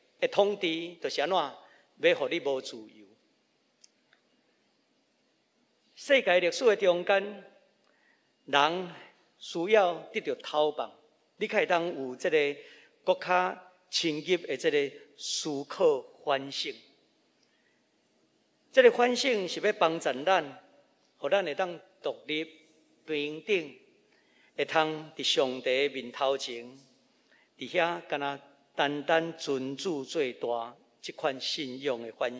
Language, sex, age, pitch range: Chinese, male, 50-69, 145-210 Hz